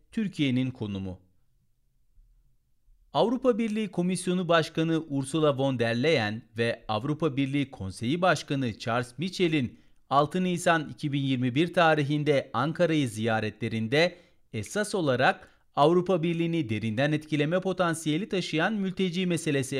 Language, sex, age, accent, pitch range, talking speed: Turkish, male, 40-59, native, 120-165 Hz, 100 wpm